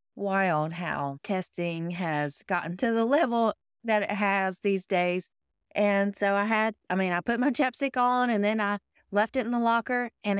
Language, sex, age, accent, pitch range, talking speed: English, female, 20-39, American, 180-230 Hz, 190 wpm